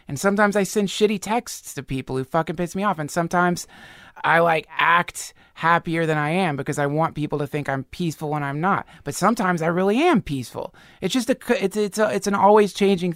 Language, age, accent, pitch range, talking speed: English, 20-39, American, 155-210 Hz, 220 wpm